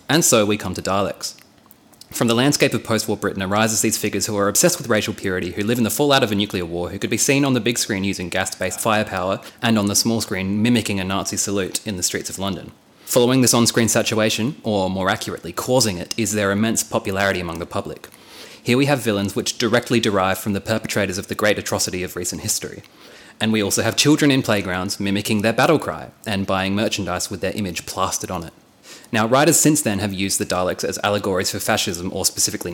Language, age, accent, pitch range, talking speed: English, 20-39, Australian, 95-115 Hz, 225 wpm